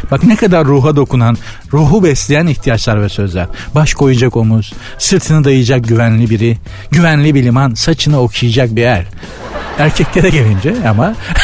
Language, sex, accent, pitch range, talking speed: Turkish, male, native, 120-175 Hz, 145 wpm